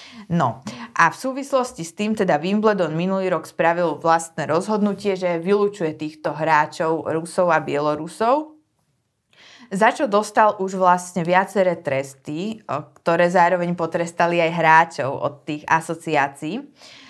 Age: 20-39